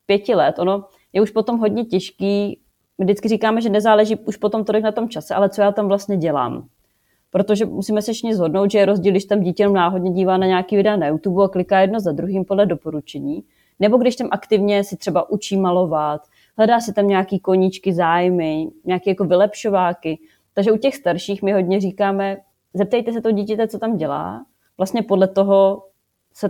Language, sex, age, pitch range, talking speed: Czech, female, 30-49, 185-210 Hz, 190 wpm